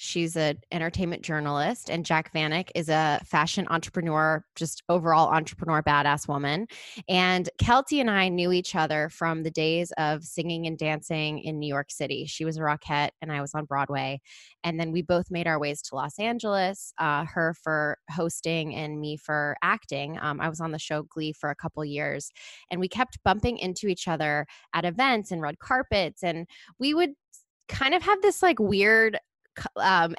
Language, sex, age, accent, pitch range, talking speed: English, female, 20-39, American, 155-200 Hz, 190 wpm